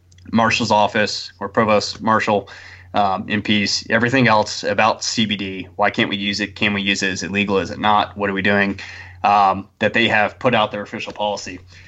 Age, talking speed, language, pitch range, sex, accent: 20-39, 200 wpm, English, 95-105 Hz, male, American